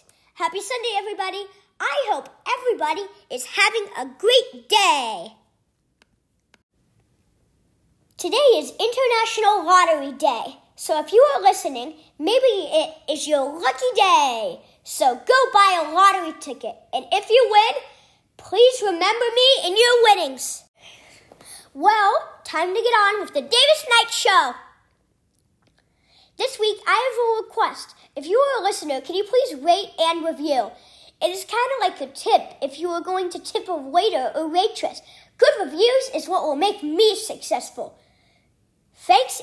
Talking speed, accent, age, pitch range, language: 145 wpm, American, 40-59, 315-440 Hz, English